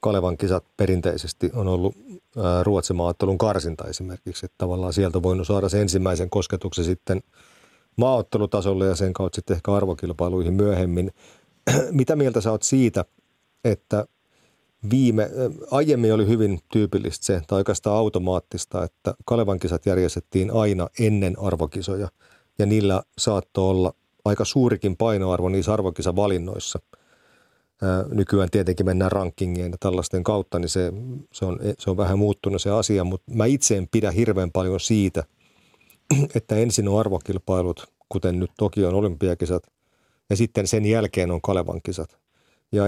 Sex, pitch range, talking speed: male, 90-105 Hz, 135 wpm